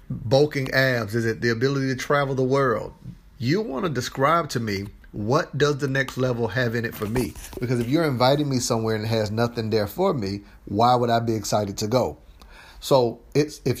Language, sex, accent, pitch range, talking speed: English, male, American, 110-135 Hz, 210 wpm